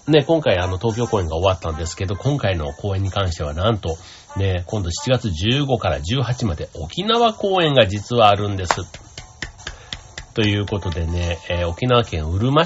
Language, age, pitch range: Japanese, 40-59, 85-115 Hz